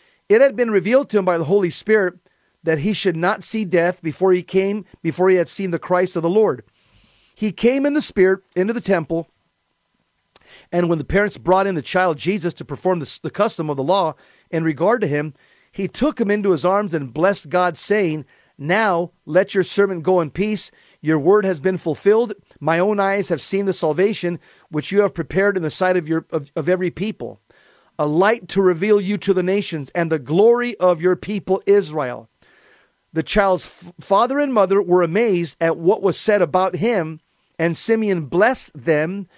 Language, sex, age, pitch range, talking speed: English, male, 40-59, 165-200 Hz, 195 wpm